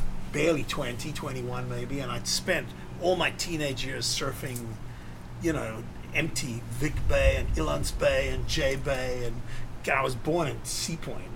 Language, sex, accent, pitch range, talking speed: English, male, American, 110-155 Hz, 155 wpm